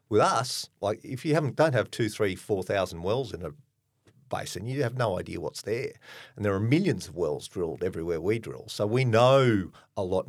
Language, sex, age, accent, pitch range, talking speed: English, male, 50-69, Australian, 105-135 Hz, 215 wpm